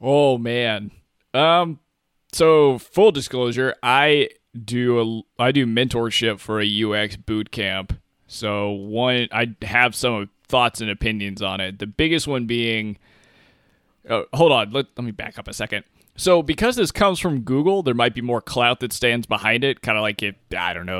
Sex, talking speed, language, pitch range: male, 175 wpm, English, 105-130 Hz